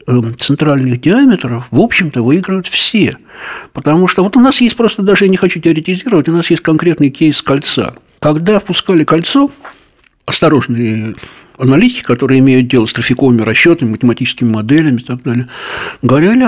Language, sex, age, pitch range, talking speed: Russian, male, 60-79, 125-170 Hz, 150 wpm